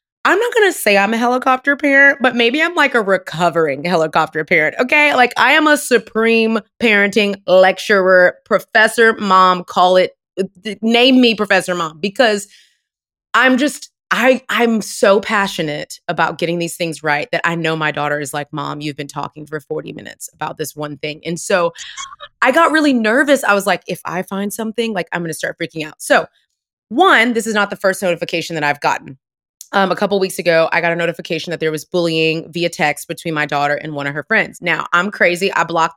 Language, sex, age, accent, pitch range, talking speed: English, female, 20-39, American, 165-225 Hz, 205 wpm